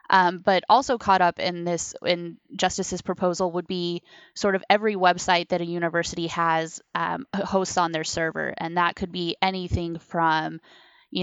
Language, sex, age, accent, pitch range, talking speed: English, female, 20-39, American, 170-195 Hz, 170 wpm